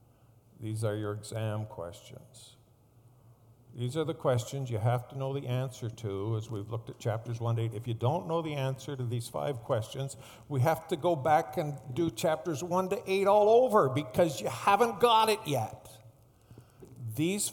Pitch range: 110-130 Hz